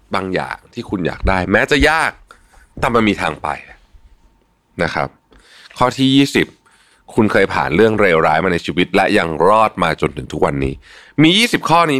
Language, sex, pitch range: Thai, male, 80-130 Hz